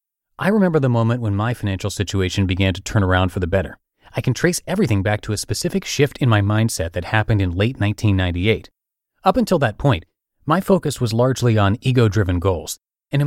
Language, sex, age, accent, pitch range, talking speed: English, male, 30-49, American, 105-150 Hz, 210 wpm